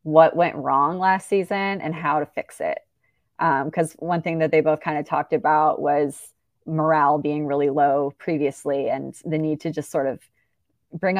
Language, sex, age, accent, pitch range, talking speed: English, female, 20-39, American, 155-180 Hz, 190 wpm